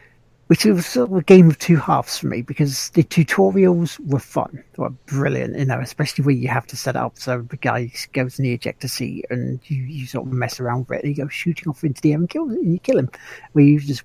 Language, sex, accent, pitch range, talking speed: English, male, British, 125-170 Hz, 270 wpm